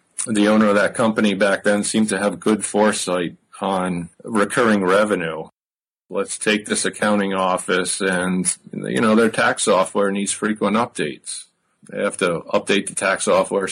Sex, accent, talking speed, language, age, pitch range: male, American, 155 wpm, English, 50-69, 95-105 Hz